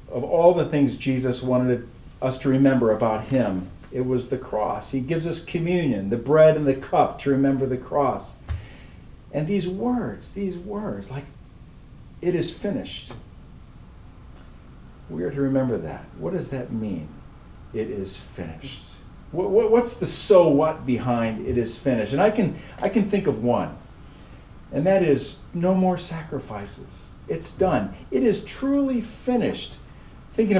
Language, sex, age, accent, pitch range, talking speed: English, male, 50-69, American, 125-175 Hz, 150 wpm